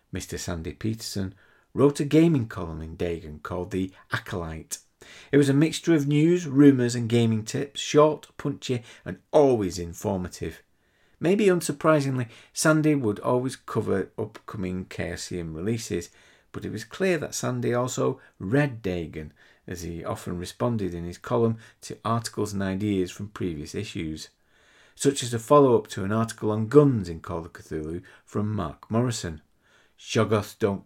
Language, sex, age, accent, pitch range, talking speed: English, male, 50-69, British, 90-130 Hz, 150 wpm